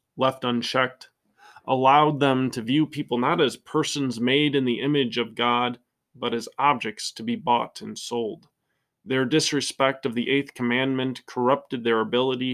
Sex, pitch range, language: male, 120-140 Hz, English